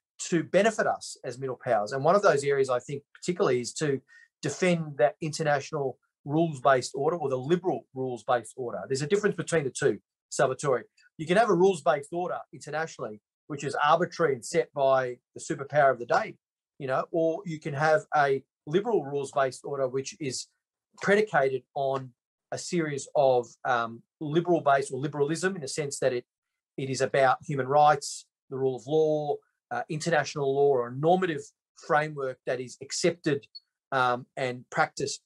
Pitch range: 130-170 Hz